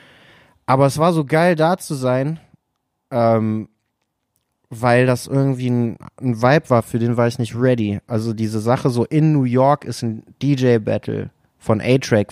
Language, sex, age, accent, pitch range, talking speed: German, male, 30-49, German, 105-130 Hz, 165 wpm